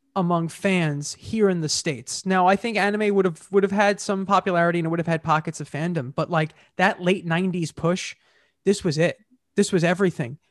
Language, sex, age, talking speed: English, male, 20-39, 200 wpm